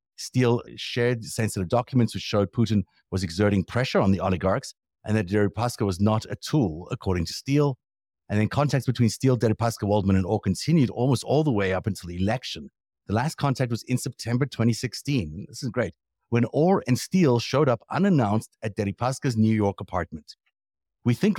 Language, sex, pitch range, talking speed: English, male, 95-130 Hz, 180 wpm